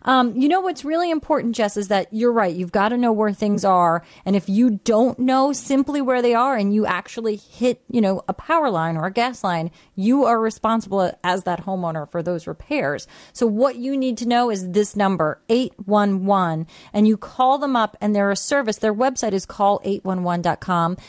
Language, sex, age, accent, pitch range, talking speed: English, female, 30-49, American, 185-235 Hz, 205 wpm